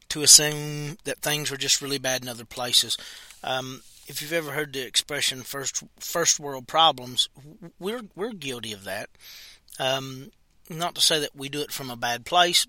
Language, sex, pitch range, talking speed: English, male, 120-150 Hz, 185 wpm